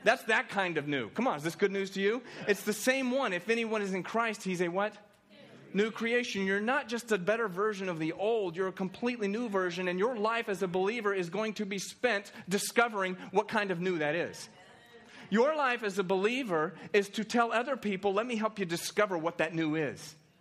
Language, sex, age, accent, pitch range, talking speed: English, male, 30-49, American, 170-225 Hz, 230 wpm